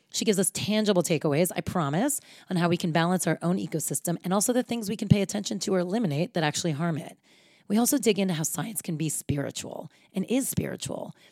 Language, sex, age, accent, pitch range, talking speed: English, female, 30-49, American, 155-190 Hz, 225 wpm